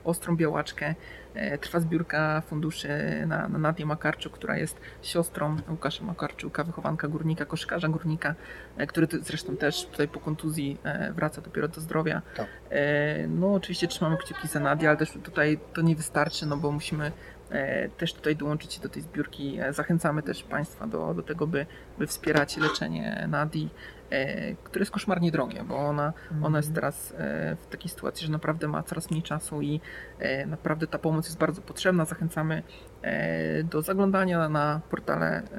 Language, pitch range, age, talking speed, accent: Polish, 150-170 Hz, 30-49, 160 wpm, native